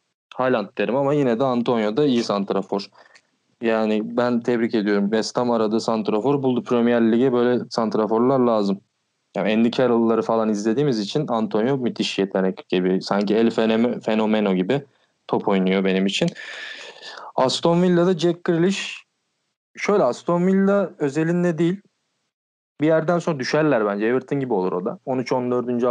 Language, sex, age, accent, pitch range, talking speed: Turkish, male, 20-39, native, 105-140 Hz, 135 wpm